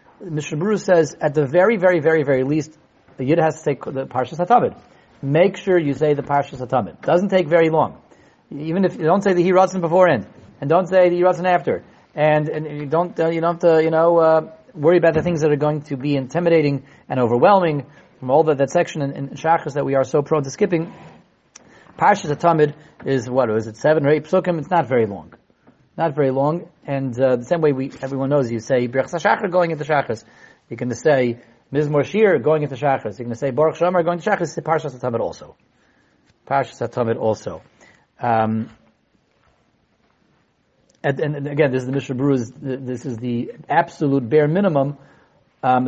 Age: 40-59